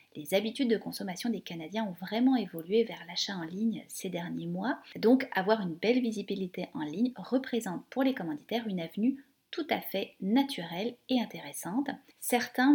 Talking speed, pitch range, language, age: 170 wpm, 180-245 Hz, French, 30-49